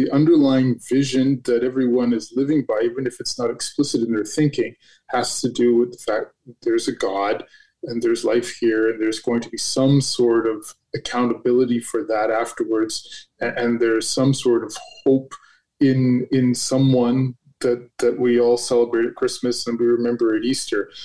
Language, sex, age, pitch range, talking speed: English, male, 20-39, 120-145 Hz, 180 wpm